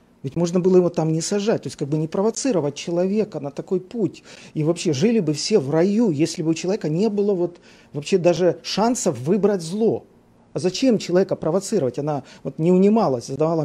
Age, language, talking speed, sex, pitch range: 40-59, Russian, 200 wpm, male, 150-205 Hz